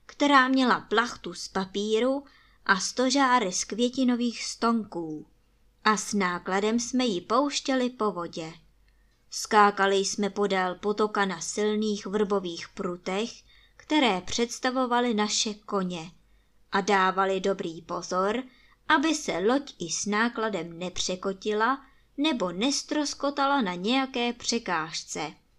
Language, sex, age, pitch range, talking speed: Czech, male, 20-39, 185-245 Hz, 110 wpm